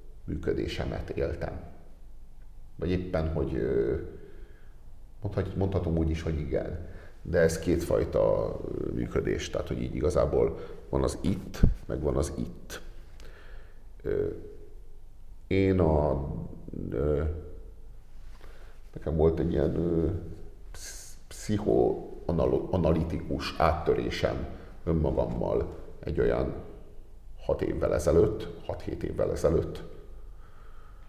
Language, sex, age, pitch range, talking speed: Hungarian, male, 50-69, 75-90 Hz, 80 wpm